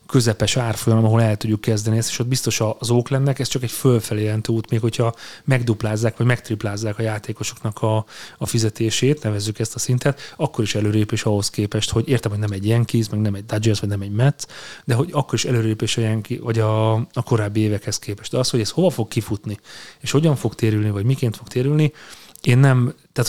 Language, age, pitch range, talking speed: Hungarian, 30-49, 110-135 Hz, 210 wpm